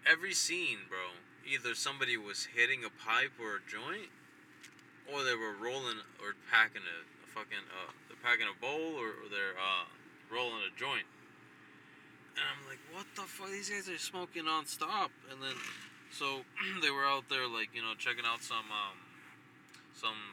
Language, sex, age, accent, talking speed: English, male, 20-39, American, 175 wpm